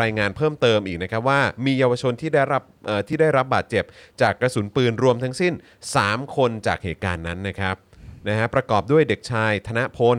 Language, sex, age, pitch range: Thai, male, 30-49, 100-120 Hz